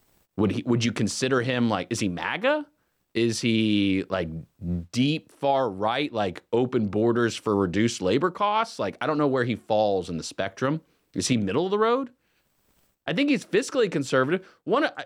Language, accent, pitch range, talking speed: English, American, 110-180 Hz, 175 wpm